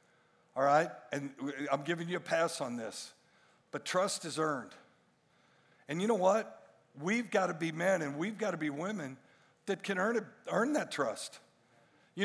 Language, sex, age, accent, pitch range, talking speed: English, male, 60-79, American, 160-210 Hz, 180 wpm